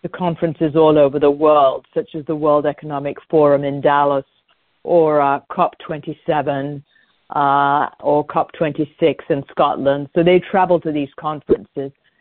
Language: English